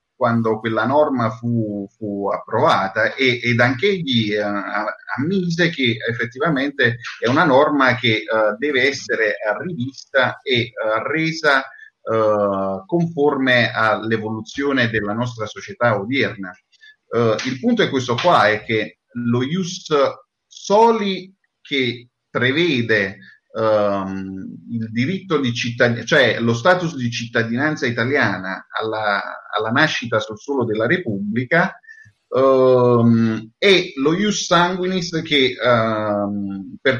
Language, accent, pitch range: Italian, native, 110-155 Hz